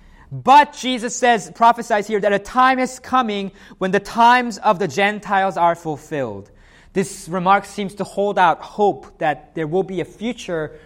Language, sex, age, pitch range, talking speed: English, male, 30-49, 150-210 Hz, 170 wpm